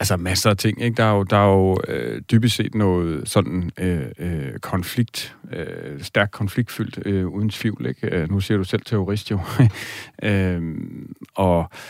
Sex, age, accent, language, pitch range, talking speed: male, 40-59, native, Danish, 95-110 Hz, 170 wpm